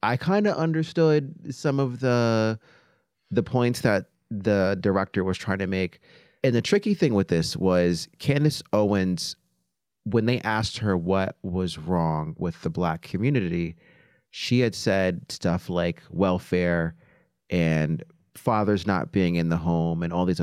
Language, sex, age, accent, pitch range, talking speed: English, male, 30-49, American, 95-125 Hz, 155 wpm